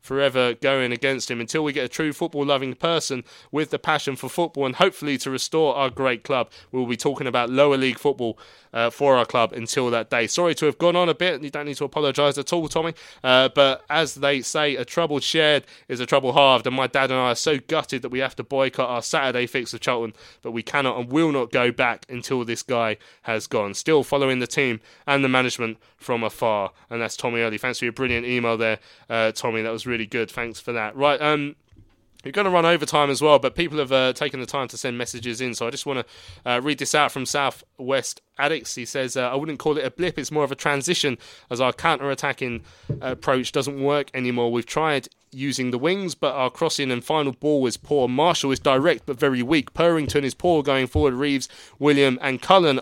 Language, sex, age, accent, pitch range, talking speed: English, male, 20-39, British, 125-150 Hz, 235 wpm